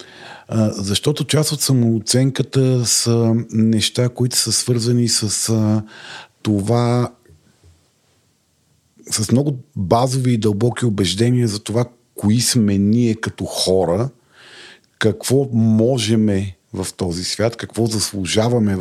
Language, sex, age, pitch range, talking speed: Bulgarian, male, 50-69, 105-125 Hz, 100 wpm